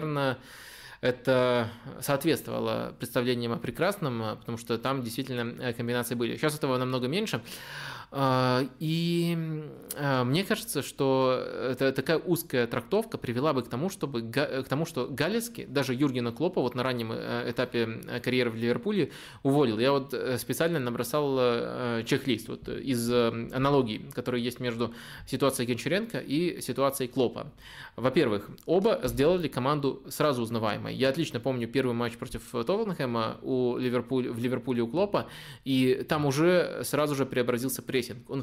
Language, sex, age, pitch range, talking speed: Russian, male, 20-39, 120-145 Hz, 135 wpm